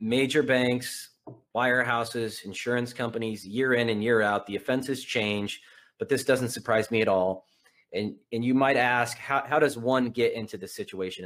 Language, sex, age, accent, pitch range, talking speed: English, male, 30-49, American, 110-130 Hz, 175 wpm